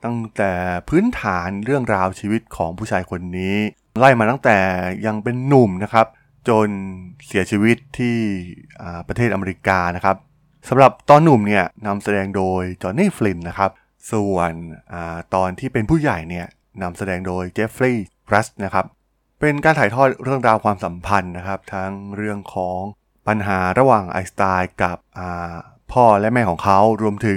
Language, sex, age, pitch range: Thai, male, 20-39, 90-115 Hz